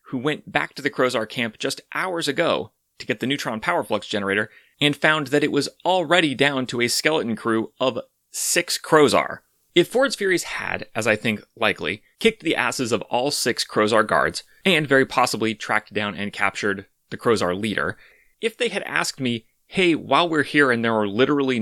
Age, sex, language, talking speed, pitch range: 30-49, male, English, 195 wpm, 110-155 Hz